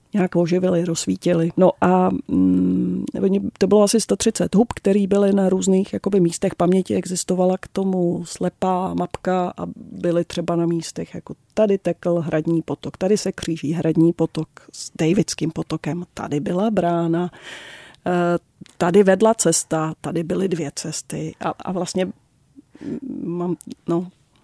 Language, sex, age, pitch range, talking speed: Czech, female, 30-49, 160-185 Hz, 135 wpm